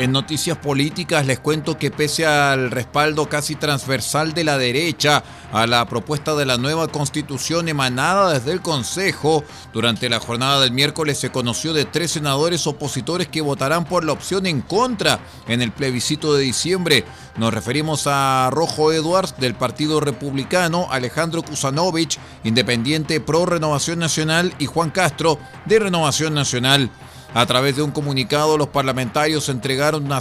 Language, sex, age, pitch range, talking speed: Spanish, male, 40-59, 135-160 Hz, 155 wpm